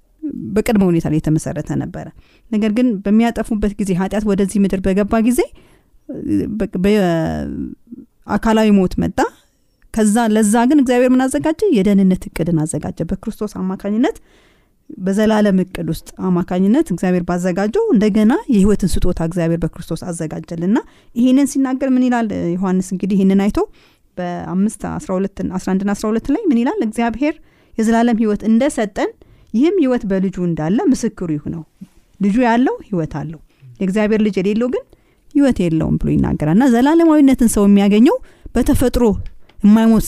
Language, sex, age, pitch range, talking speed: Amharic, female, 30-49, 180-240 Hz, 110 wpm